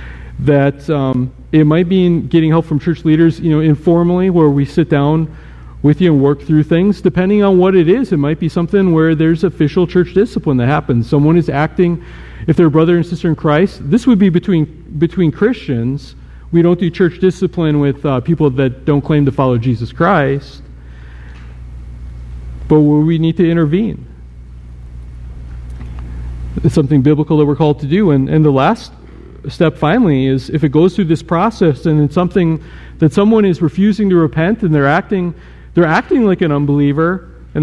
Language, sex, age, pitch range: English, male, 50-69, 135-175 Hz